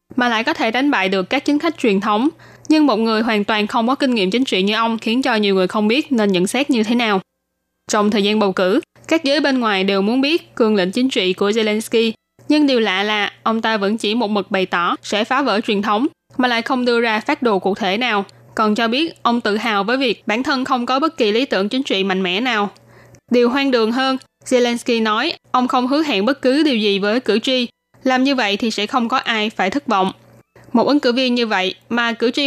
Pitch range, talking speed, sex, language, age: 205-260 Hz, 260 wpm, female, Vietnamese, 10-29